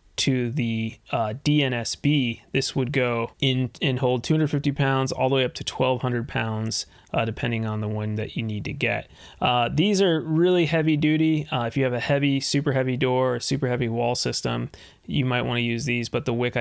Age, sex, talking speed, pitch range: 20-39, male, 205 wpm, 115-135 Hz